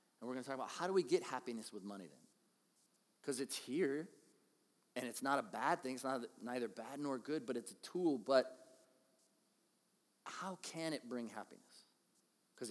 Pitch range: 125-160 Hz